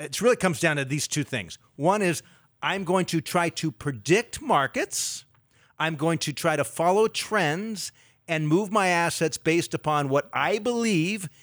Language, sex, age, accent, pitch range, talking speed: English, male, 40-59, American, 125-160 Hz, 175 wpm